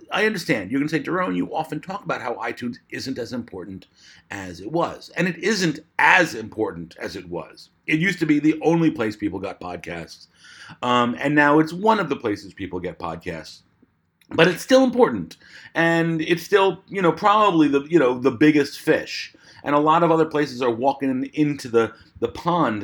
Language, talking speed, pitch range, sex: English, 200 wpm, 115-160 Hz, male